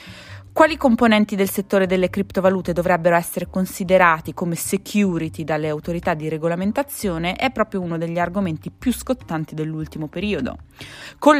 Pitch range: 160-225 Hz